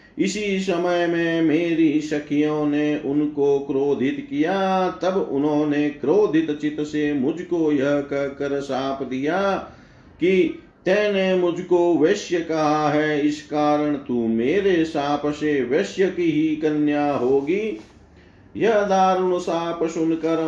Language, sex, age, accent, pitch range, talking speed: Hindi, male, 50-69, native, 150-185 Hz, 115 wpm